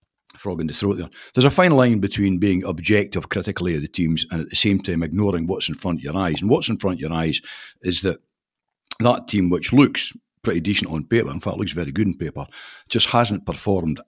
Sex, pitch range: male, 90-115 Hz